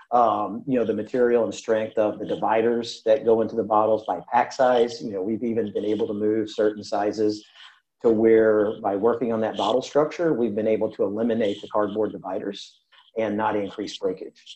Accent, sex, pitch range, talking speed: American, male, 105-125 Hz, 200 wpm